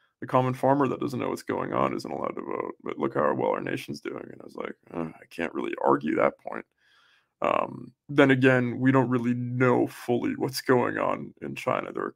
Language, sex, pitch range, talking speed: English, male, 125-155 Hz, 210 wpm